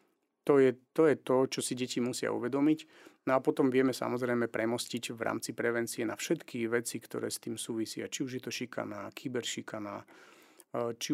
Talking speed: 180 wpm